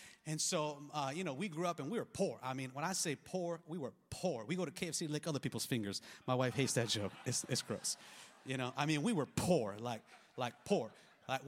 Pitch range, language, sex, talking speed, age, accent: 140-190 Hz, English, male, 255 wpm, 30-49, American